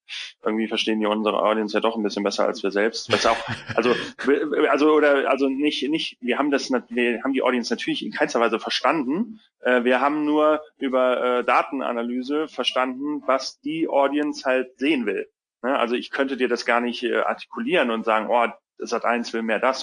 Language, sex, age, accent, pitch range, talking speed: German, male, 30-49, German, 115-145 Hz, 180 wpm